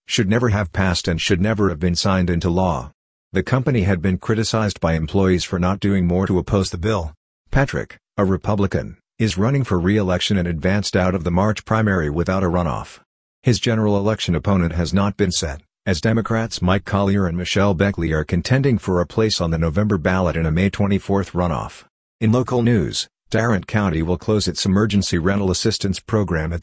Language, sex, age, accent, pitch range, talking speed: English, male, 50-69, American, 90-105 Hz, 195 wpm